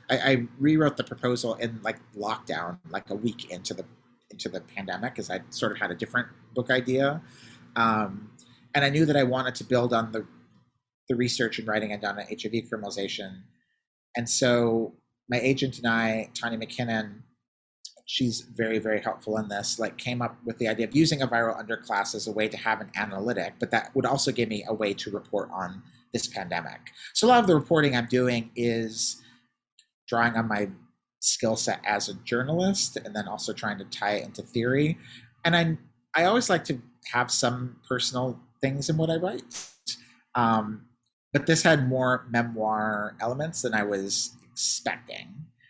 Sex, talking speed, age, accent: male, 185 wpm, 30-49, American